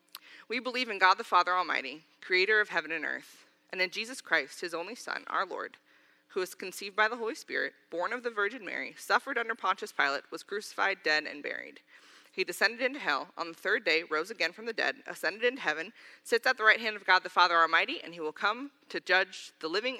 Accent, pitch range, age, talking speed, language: American, 180-225 Hz, 20-39, 230 wpm, English